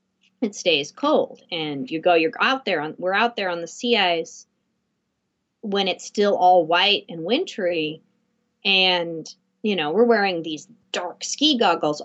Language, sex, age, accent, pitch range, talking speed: English, female, 30-49, American, 175-235 Hz, 160 wpm